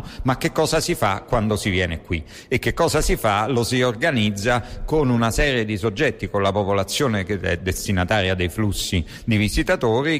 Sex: male